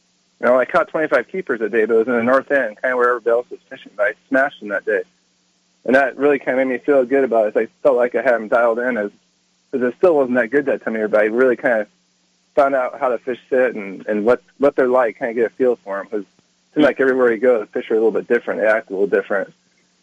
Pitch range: 105-145 Hz